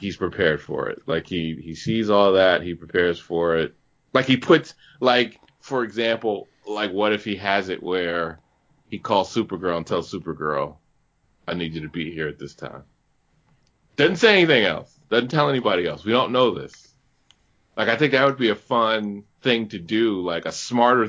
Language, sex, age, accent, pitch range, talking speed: English, male, 30-49, American, 85-115 Hz, 195 wpm